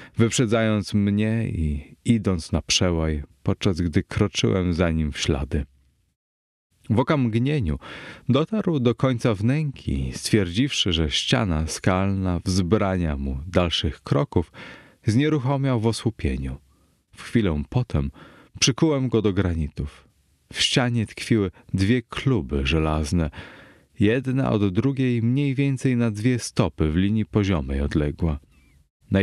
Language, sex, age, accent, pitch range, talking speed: Polish, male, 30-49, native, 80-120 Hz, 115 wpm